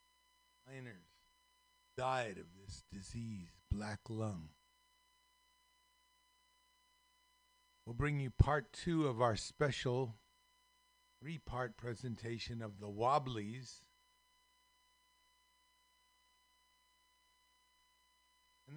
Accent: American